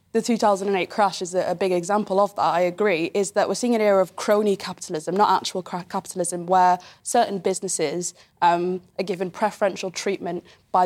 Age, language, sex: 20-39, English, female